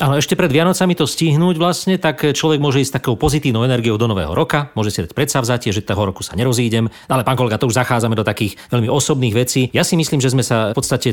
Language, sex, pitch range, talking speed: Slovak, male, 105-135 Hz, 250 wpm